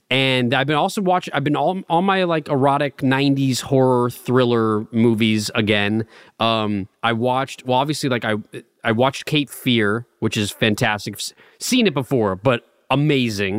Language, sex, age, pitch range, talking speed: English, male, 30-49, 110-140 Hz, 165 wpm